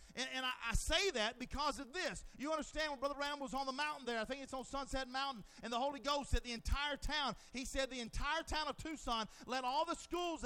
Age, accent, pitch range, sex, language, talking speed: 40-59, American, 255-325 Hz, male, English, 250 wpm